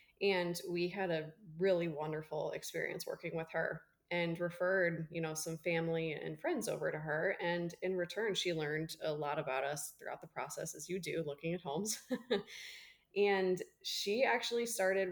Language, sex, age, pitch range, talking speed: English, female, 20-39, 160-185 Hz, 170 wpm